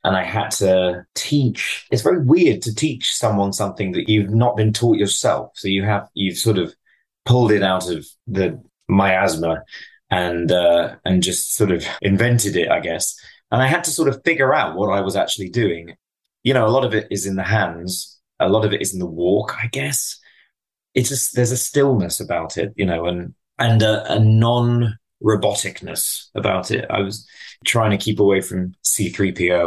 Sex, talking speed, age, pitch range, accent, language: male, 200 wpm, 30-49, 95-120 Hz, British, English